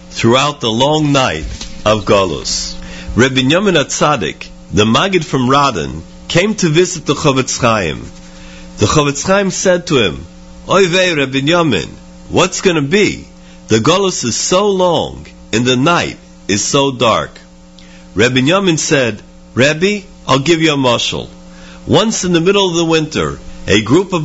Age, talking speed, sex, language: 50-69, 150 wpm, male, English